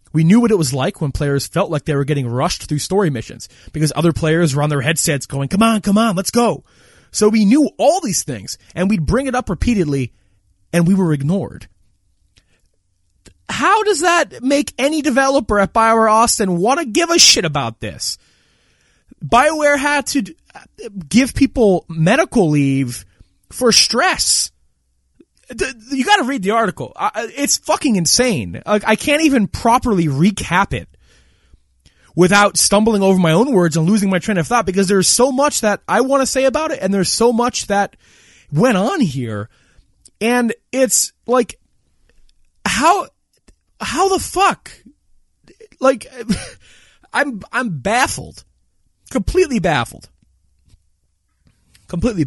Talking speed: 155 wpm